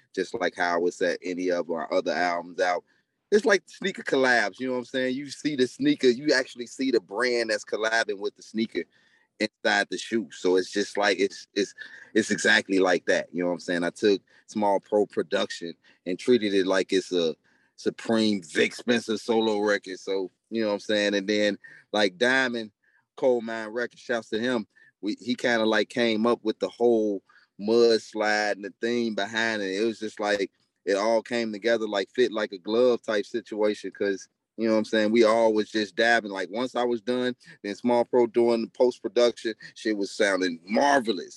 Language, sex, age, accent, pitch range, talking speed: English, male, 30-49, American, 100-120 Hz, 205 wpm